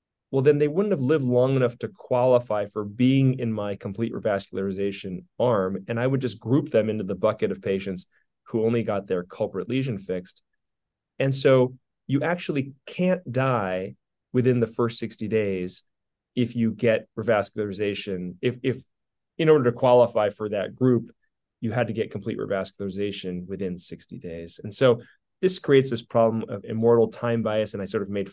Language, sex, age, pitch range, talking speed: English, male, 30-49, 100-125 Hz, 175 wpm